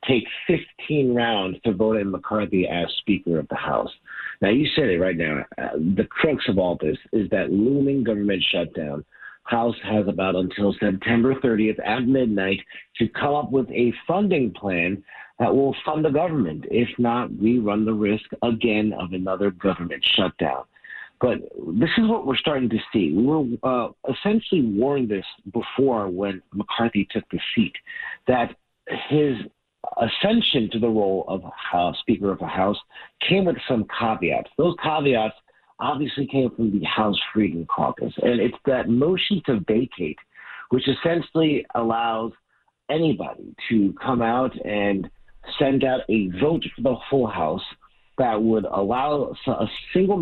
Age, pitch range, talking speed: 50-69, 100-135 Hz, 160 wpm